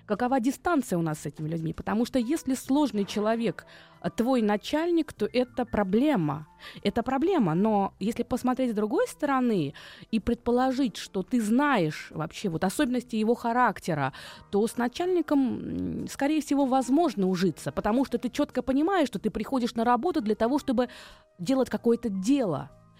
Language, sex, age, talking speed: Russian, female, 20-39, 155 wpm